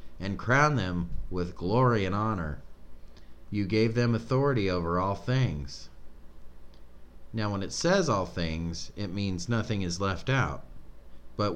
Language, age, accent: English, 40-59, American